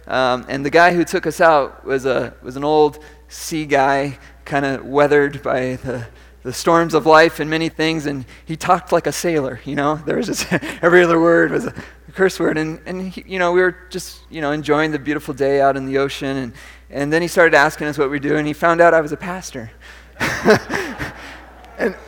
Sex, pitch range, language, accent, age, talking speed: male, 135-185 Hz, English, American, 30-49, 215 wpm